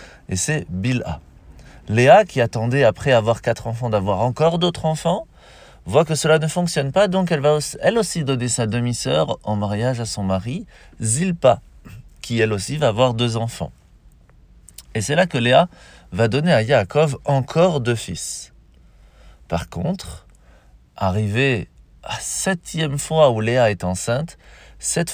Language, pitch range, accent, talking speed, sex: French, 100-145 Hz, French, 160 wpm, male